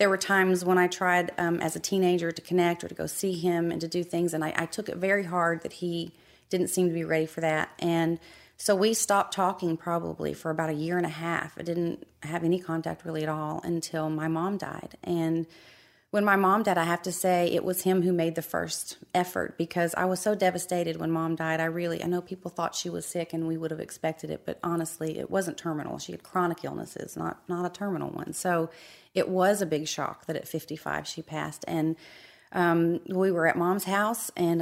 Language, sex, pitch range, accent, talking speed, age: English, female, 160-180 Hz, American, 235 wpm, 30-49